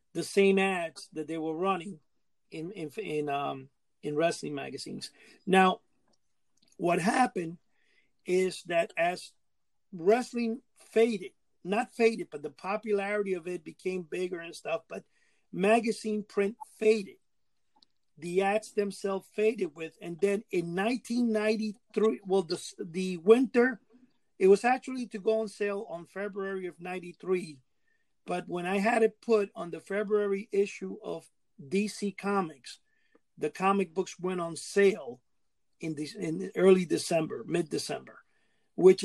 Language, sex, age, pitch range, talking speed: English, male, 50-69, 170-210 Hz, 140 wpm